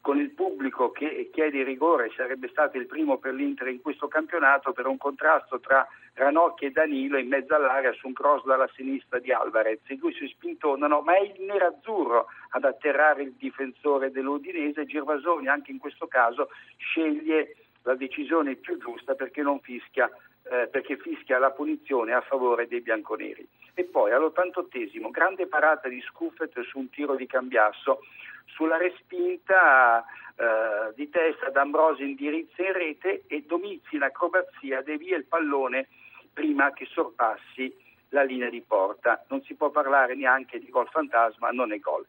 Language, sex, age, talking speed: Italian, male, 50-69, 165 wpm